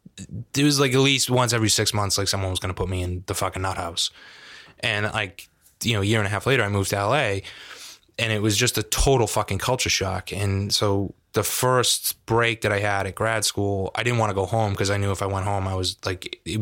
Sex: male